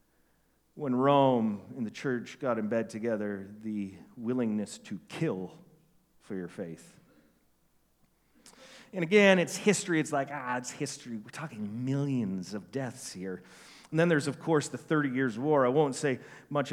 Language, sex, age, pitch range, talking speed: English, male, 40-59, 115-155 Hz, 160 wpm